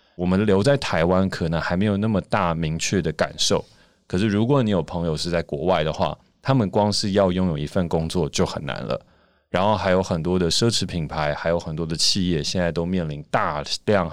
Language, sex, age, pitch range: Chinese, male, 20-39, 80-95 Hz